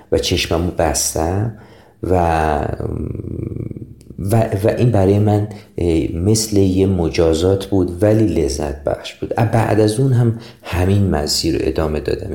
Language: Persian